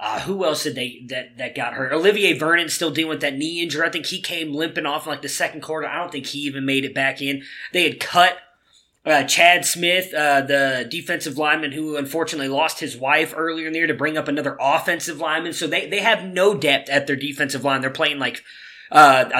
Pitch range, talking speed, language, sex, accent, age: 140-170 Hz, 235 wpm, English, male, American, 20-39